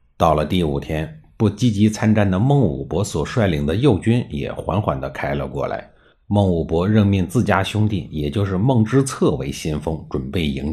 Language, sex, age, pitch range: Chinese, male, 50-69, 80-115 Hz